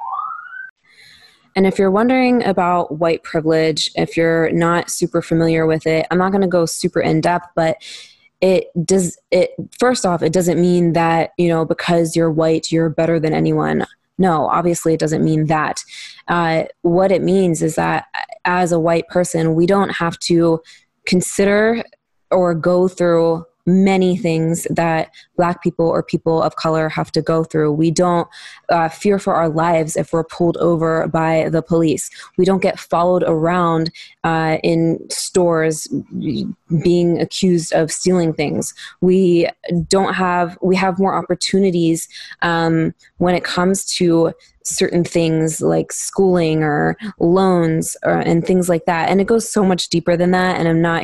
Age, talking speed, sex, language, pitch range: 20-39, 165 wpm, female, English, 165-185 Hz